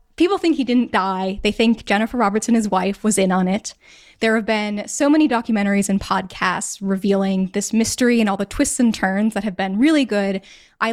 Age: 20-39